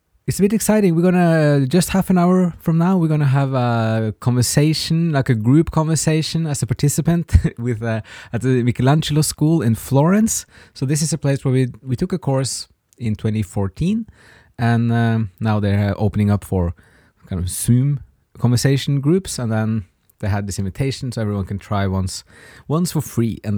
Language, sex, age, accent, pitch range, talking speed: English, male, 20-39, Norwegian, 100-135 Hz, 190 wpm